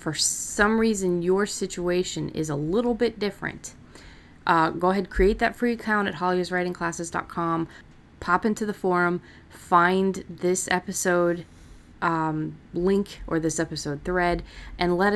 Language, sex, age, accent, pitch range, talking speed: English, female, 30-49, American, 150-180 Hz, 135 wpm